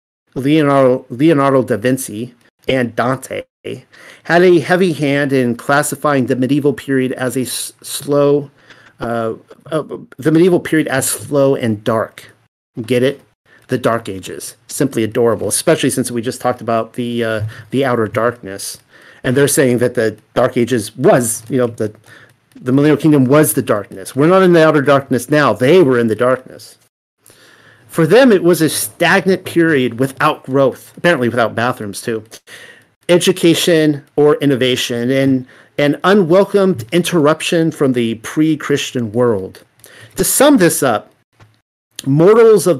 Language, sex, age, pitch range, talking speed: English, male, 50-69, 120-155 Hz, 145 wpm